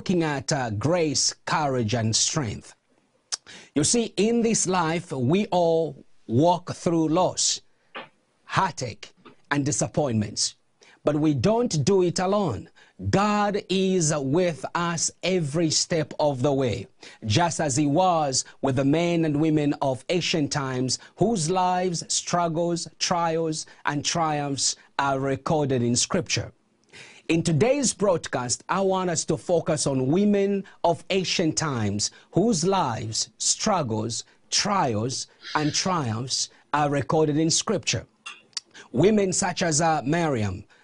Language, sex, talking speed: English, male, 125 wpm